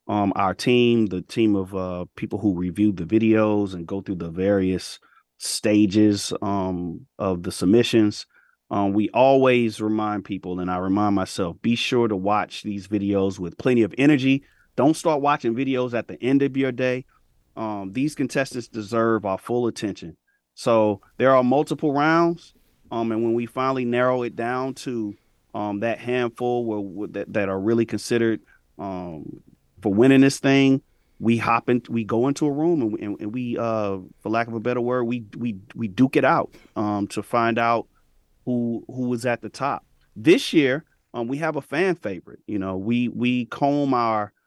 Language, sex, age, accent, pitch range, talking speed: English, male, 30-49, American, 105-130 Hz, 180 wpm